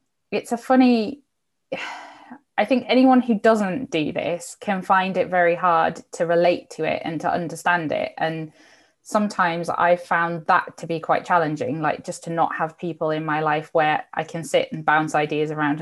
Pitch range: 155-195 Hz